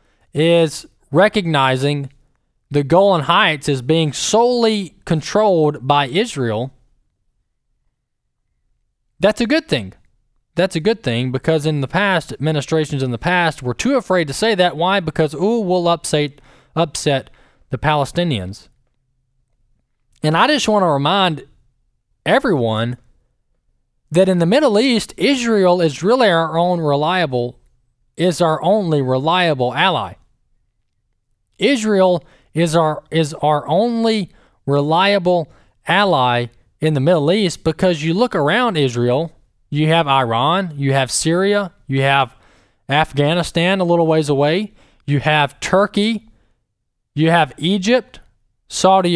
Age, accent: 20-39, American